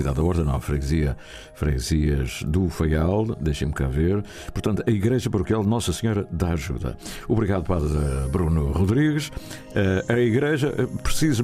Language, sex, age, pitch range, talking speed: Portuguese, male, 60-79, 80-115 Hz, 140 wpm